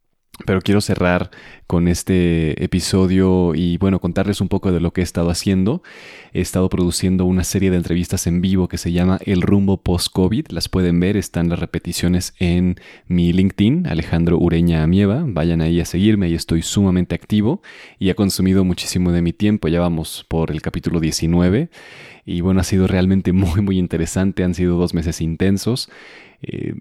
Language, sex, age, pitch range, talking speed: Spanish, male, 30-49, 85-95 Hz, 180 wpm